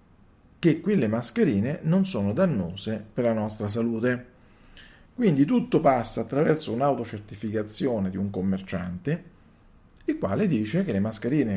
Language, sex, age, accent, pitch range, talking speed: Italian, male, 40-59, native, 100-135 Hz, 125 wpm